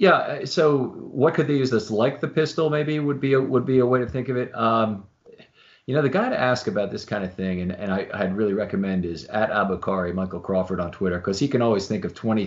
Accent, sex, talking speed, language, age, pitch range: American, male, 260 wpm, English, 40-59, 95-120 Hz